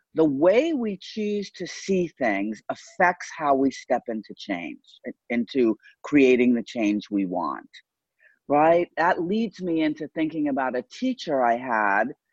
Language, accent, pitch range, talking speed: English, American, 120-180 Hz, 145 wpm